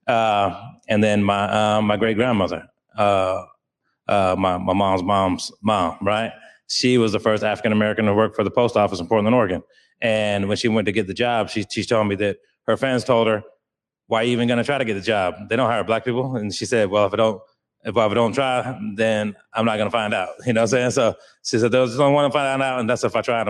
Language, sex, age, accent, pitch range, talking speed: English, male, 30-49, American, 105-120 Hz, 260 wpm